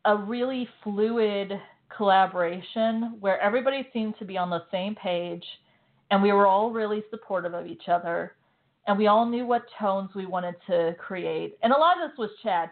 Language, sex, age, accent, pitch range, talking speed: English, female, 40-59, American, 185-220 Hz, 185 wpm